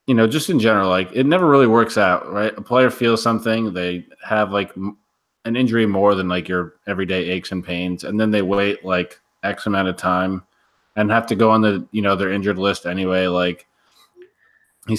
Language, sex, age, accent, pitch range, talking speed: English, male, 20-39, American, 90-110 Hz, 210 wpm